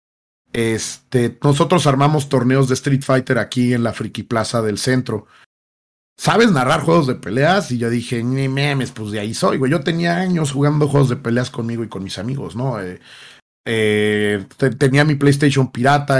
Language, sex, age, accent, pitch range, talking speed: Spanish, male, 40-59, Mexican, 115-145 Hz, 180 wpm